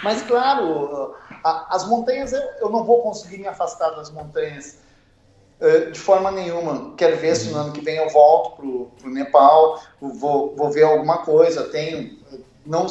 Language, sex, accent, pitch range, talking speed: Portuguese, male, Brazilian, 155-225 Hz, 170 wpm